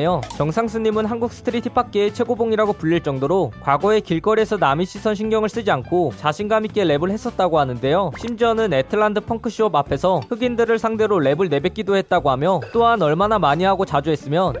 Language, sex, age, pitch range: Korean, male, 20-39, 165-220 Hz